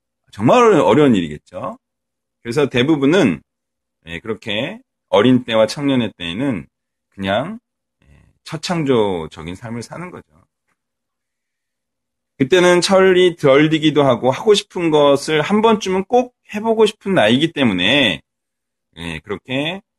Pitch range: 110-180 Hz